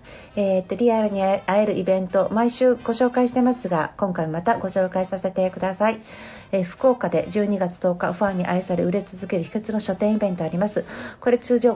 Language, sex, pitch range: Japanese, female, 185-235 Hz